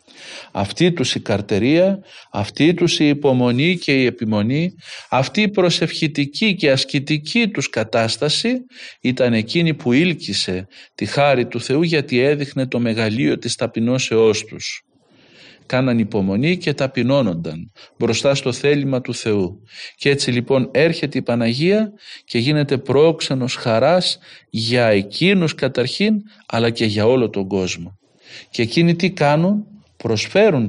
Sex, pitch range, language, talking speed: male, 120-170 Hz, Greek, 130 wpm